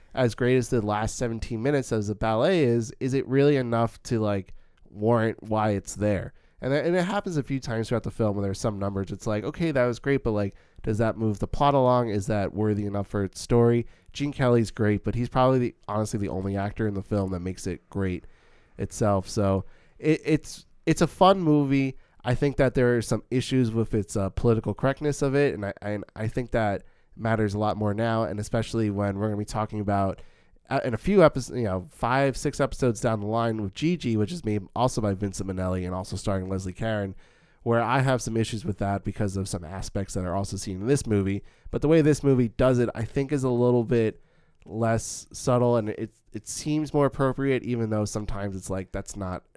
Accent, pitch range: American, 100-130 Hz